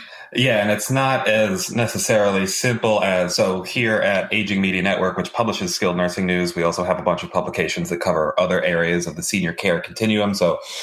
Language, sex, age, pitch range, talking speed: English, male, 30-49, 90-105 Hz, 200 wpm